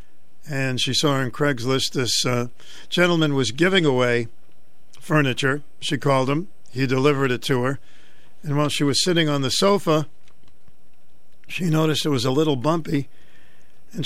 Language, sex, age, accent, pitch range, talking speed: English, male, 60-79, American, 130-155 Hz, 155 wpm